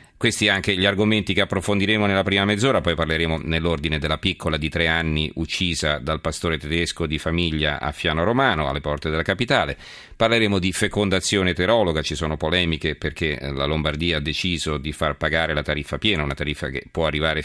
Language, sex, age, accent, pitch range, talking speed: Italian, male, 40-59, native, 80-95 Hz, 180 wpm